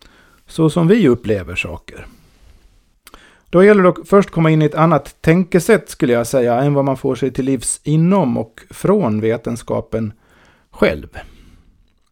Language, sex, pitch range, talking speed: Swedish, male, 105-150 Hz, 155 wpm